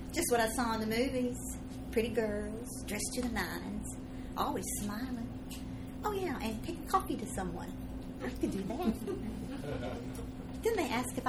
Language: English